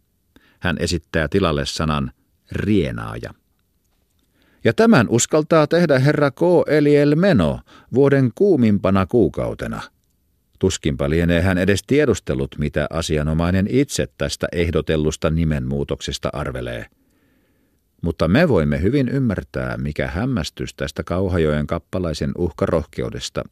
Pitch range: 70-100 Hz